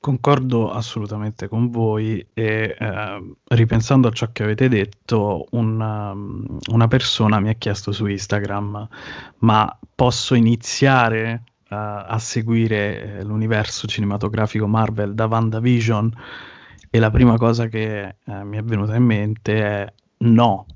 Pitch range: 105-120 Hz